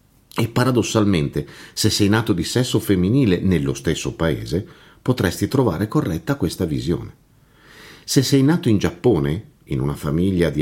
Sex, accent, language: male, native, Italian